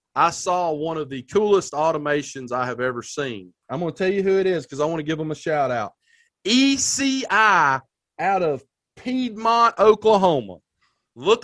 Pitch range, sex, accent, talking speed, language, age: 170-225 Hz, male, American, 170 wpm, English, 40-59